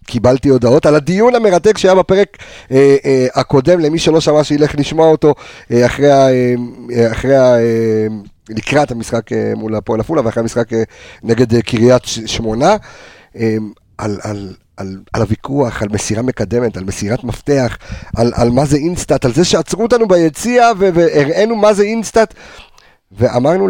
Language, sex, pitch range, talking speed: Hebrew, male, 110-165 Hz, 165 wpm